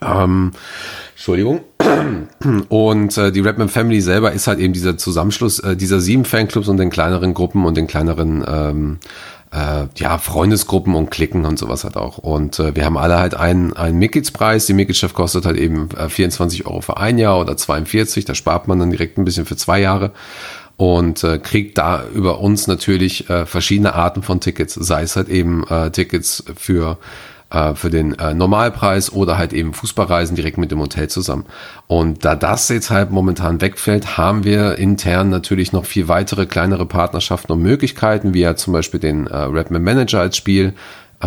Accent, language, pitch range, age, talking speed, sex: German, German, 85-100 Hz, 40-59, 180 wpm, male